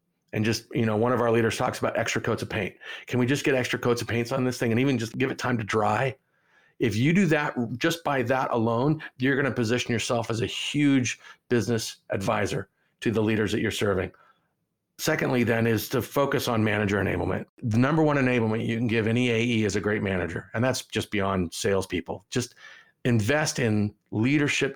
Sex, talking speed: male, 210 wpm